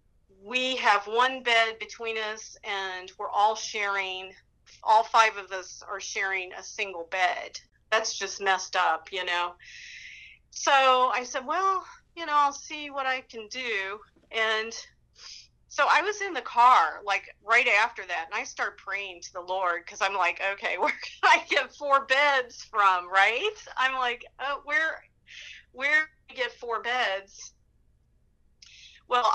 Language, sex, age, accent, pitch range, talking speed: English, female, 40-59, American, 190-250 Hz, 160 wpm